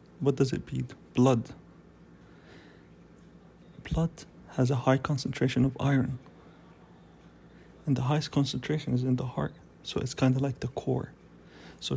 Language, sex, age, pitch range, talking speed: English, male, 30-49, 120-140 Hz, 135 wpm